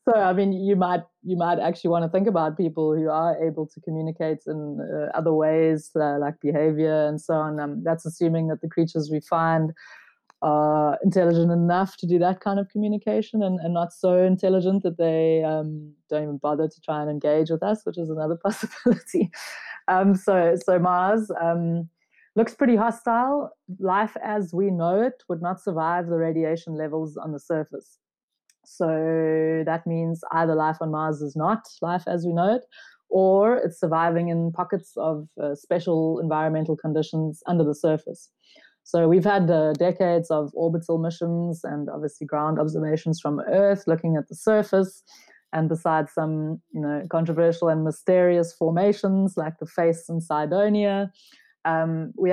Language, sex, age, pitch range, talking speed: English, female, 20-39, 155-185 Hz, 170 wpm